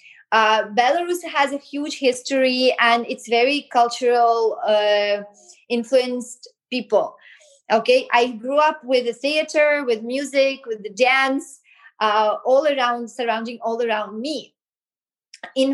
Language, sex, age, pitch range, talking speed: English, female, 20-39, 230-290 Hz, 125 wpm